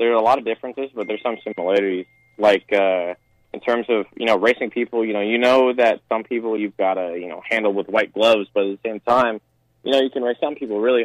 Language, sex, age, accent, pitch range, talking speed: English, male, 20-39, American, 95-120 Hz, 260 wpm